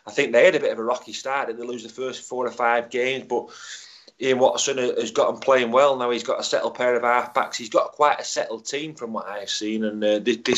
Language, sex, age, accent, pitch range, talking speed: English, male, 30-49, British, 110-145 Hz, 280 wpm